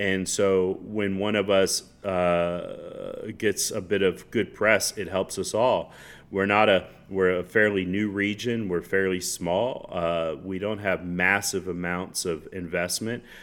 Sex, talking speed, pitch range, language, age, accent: male, 160 wpm, 95-115 Hz, English, 40-59, American